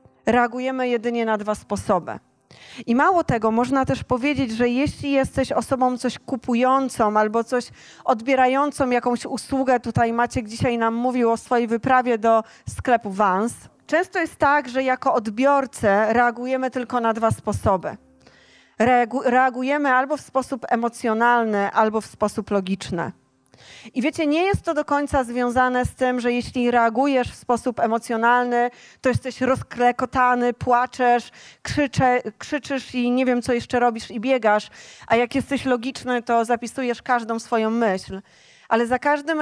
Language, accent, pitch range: Polish, native, 230-265 Hz